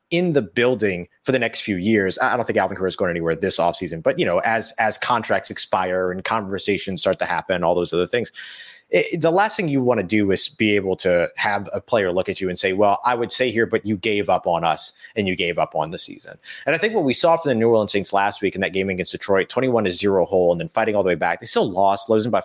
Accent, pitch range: American, 95-150 Hz